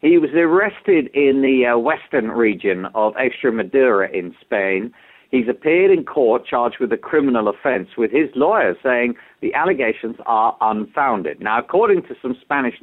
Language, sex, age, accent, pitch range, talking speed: English, male, 50-69, British, 120-155 Hz, 160 wpm